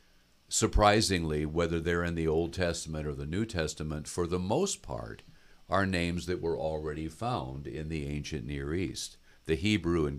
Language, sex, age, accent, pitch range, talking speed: English, male, 50-69, American, 75-95 Hz, 170 wpm